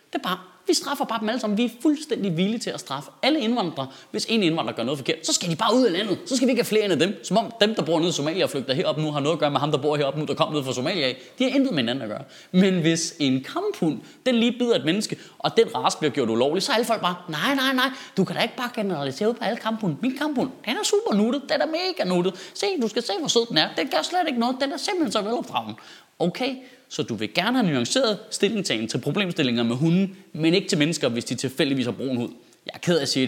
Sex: male